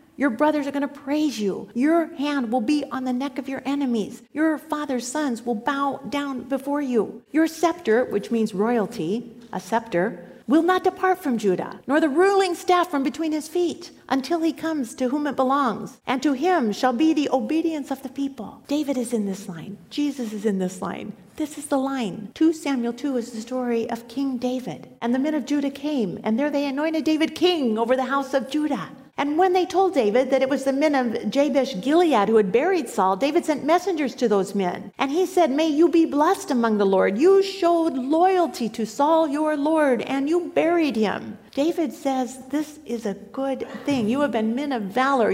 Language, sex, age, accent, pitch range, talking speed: English, female, 50-69, American, 230-305 Hz, 210 wpm